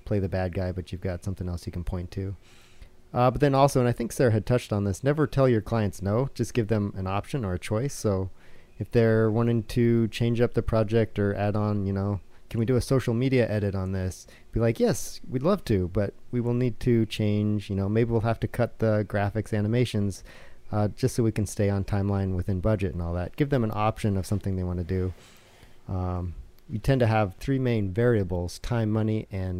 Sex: male